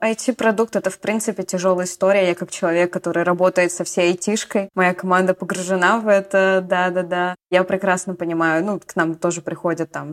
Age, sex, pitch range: 20-39, female, 175-220 Hz